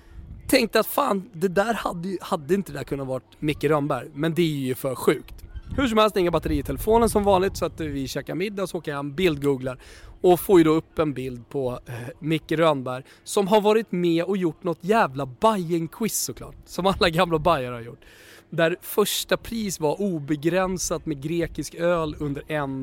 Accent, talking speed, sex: native, 205 wpm, male